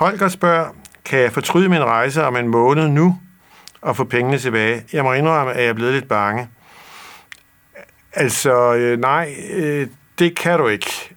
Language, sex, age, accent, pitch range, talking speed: Danish, male, 60-79, native, 115-140 Hz, 155 wpm